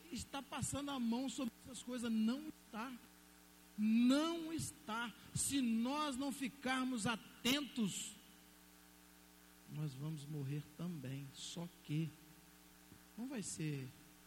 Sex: male